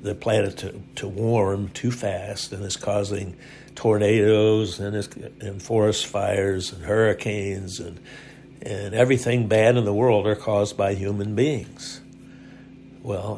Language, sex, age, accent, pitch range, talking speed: English, male, 60-79, American, 100-125 Hz, 140 wpm